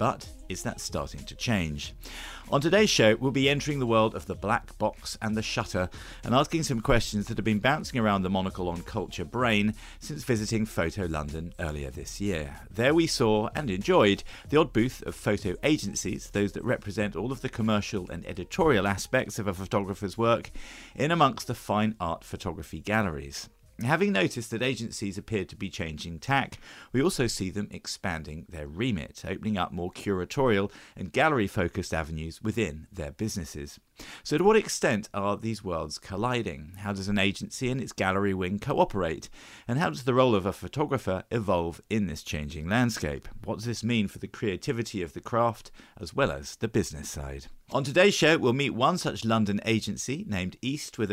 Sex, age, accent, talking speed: male, 50-69, British, 185 wpm